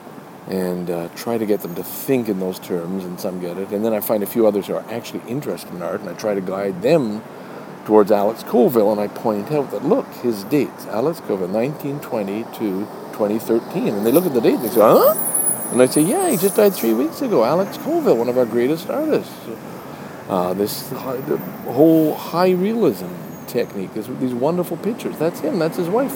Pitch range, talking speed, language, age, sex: 105-145 Hz, 210 wpm, English, 50-69, male